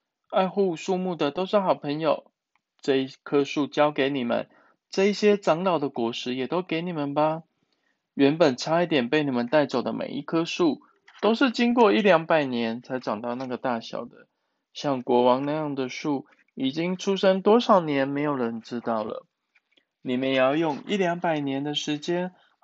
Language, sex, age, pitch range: Chinese, male, 20-39, 135-180 Hz